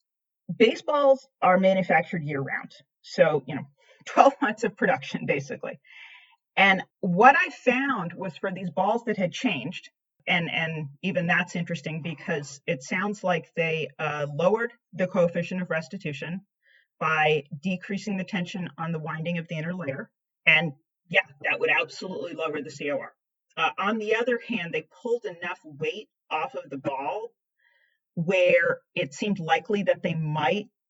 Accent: American